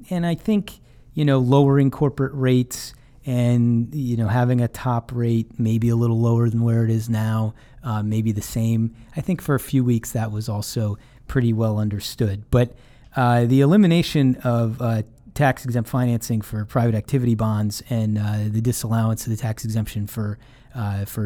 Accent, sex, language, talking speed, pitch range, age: American, male, English, 170 wpm, 110-130 Hz, 30-49